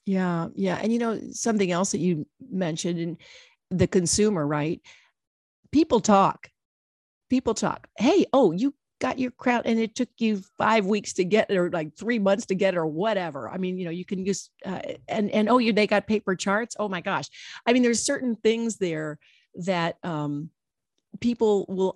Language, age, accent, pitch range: English, 50-69, American, 165-215 Hz